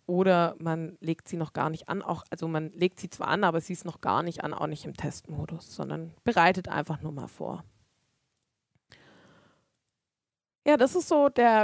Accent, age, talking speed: German, 20-39, 190 wpm